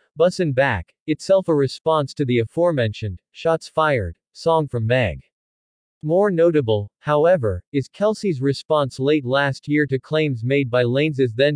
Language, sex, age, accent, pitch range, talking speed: French, male, 40-59, American, 125-155 Hz, 145 wpm